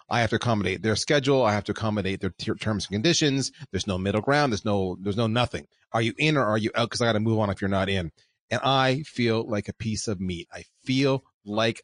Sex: male